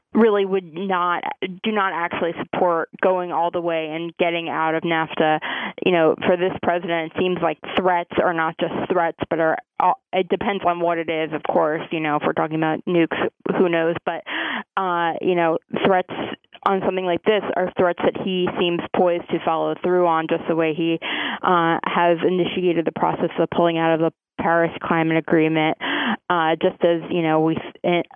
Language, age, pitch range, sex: English, 20-39, 165-185 Hz, female